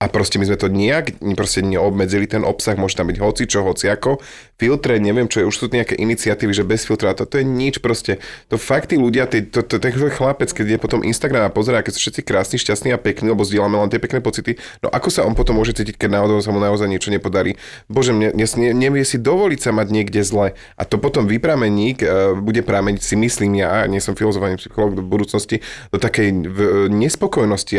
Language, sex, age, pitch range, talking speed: Slovak, male, 30-49, 100-115 Hz, 205 wpm